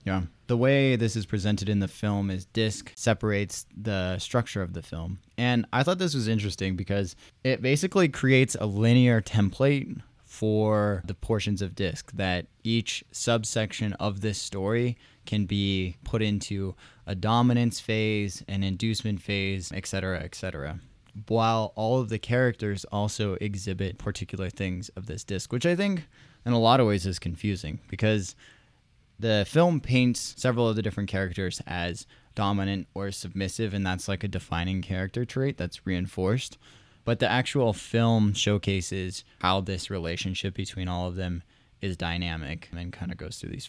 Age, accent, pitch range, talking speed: 20-39, American, 95-115 Hz, 160 wpm